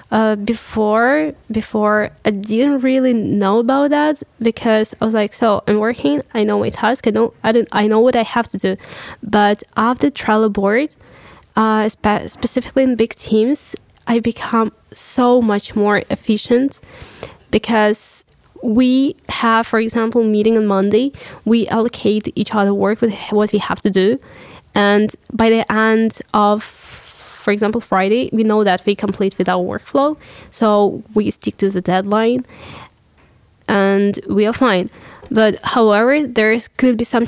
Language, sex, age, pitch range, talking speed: English, female, 10-29, 210-235 Hz, 160 wpm